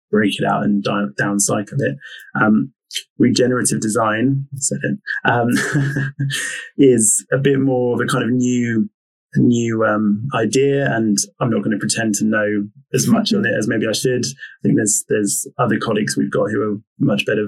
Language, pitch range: English, 105-135 Hz